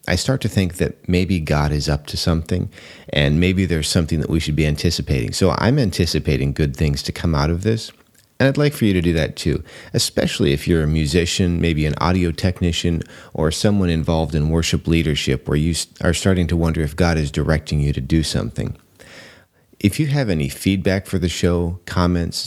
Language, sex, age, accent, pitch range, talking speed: English, male, 40-59, American, 75-95 Hz, 205 wpm